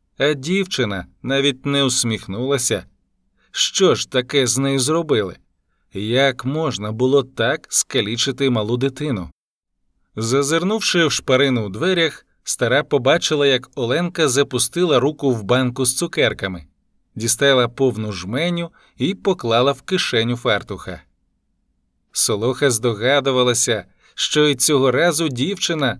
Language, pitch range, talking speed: Ukrainian, 115-155 Hz, 110 wpm